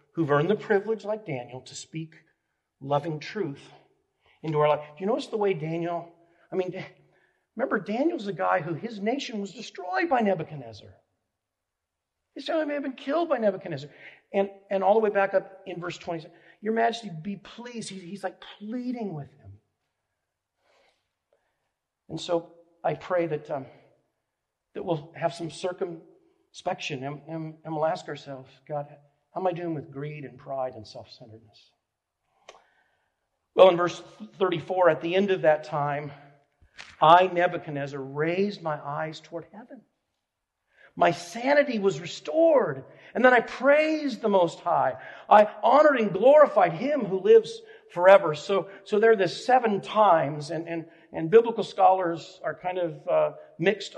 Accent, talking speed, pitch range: American, 155 wpm, 150-205 Hz